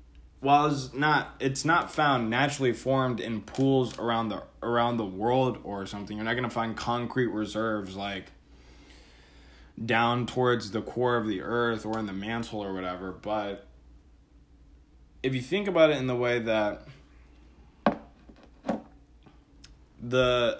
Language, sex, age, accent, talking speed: English, male, 20-39, American, 140 wpm